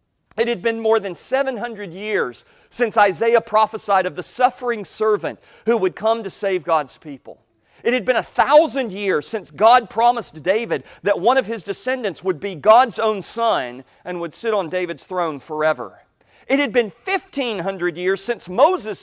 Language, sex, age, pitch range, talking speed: English, male, 40-59, 180-240 Hz, 175 wpm